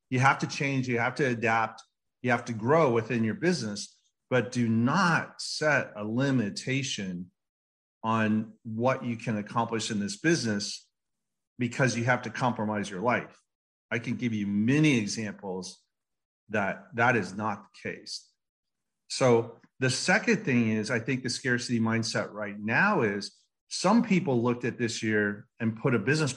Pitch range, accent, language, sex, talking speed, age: 110-145 Hz, American, English, male, 160 wpm, 40-59